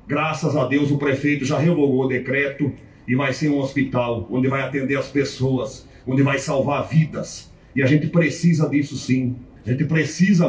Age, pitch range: 40-59, 135-170 Hz